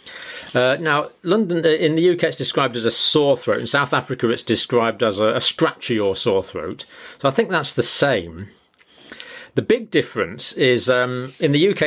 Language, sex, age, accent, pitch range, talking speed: English, male, 40-59, British, 105-135 Hz, 190 wpm